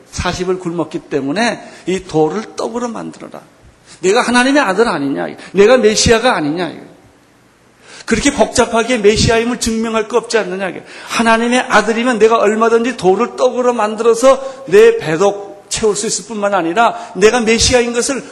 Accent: native